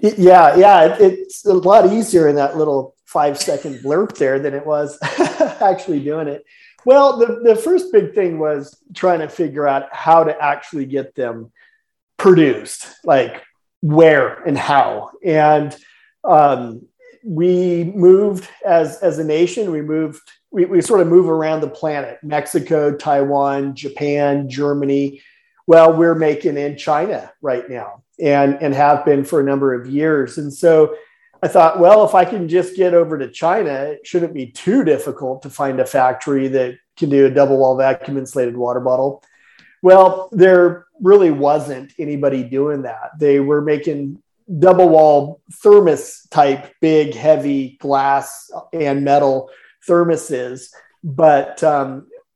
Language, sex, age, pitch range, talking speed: English, male, 40-59, 140-180 Hz, 150 wpm